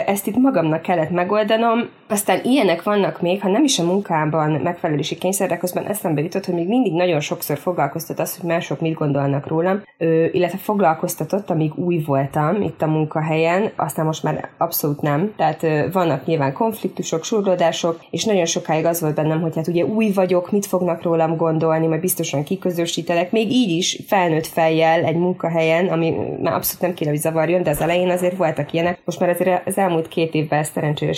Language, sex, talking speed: Hungarian, female, 175 wpm